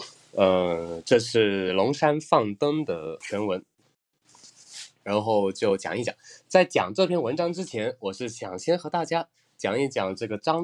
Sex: male